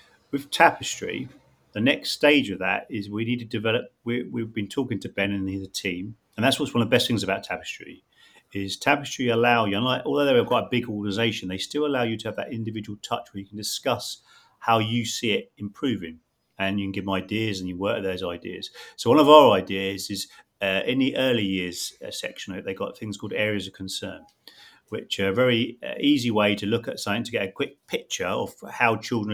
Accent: British